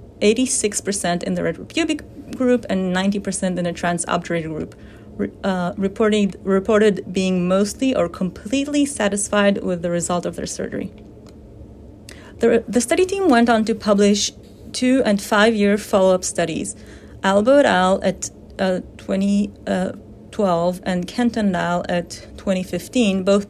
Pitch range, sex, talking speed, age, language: 180-225 Hz, female, 130 wpm, 30-49, English